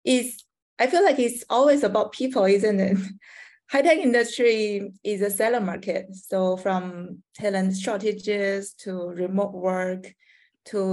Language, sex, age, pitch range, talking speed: English, female, 20-39, 185-225 Hz, 130 wpm